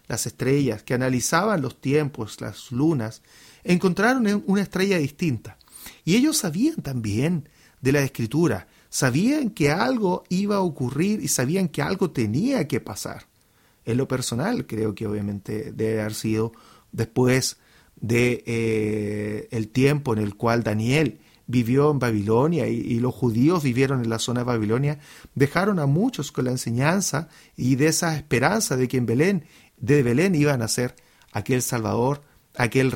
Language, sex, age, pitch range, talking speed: English, male, 40-59, 115-155 Hz, 155 wpm